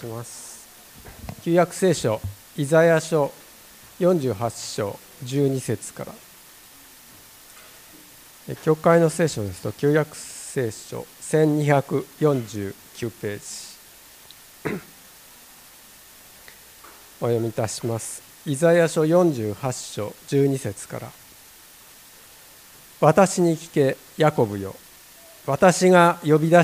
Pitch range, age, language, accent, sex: 120-165 Hz, 50-69, Japanese, native, male